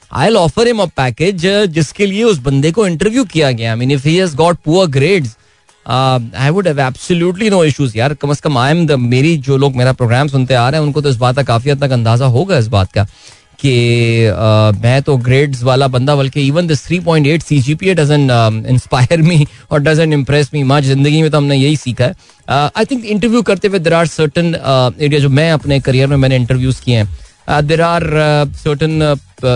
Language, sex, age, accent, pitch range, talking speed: Hindi, male, 20-39, native, 130-175 Hz, 135 wpm